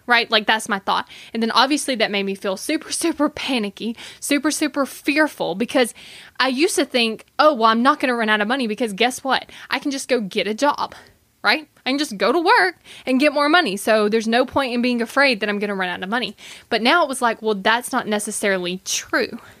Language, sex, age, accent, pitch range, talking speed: English, female, 20-39, American, 210-265 Hz, 240 wpm